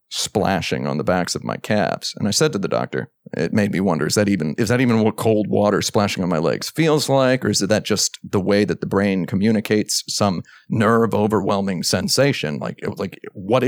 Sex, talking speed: male, 225 wpm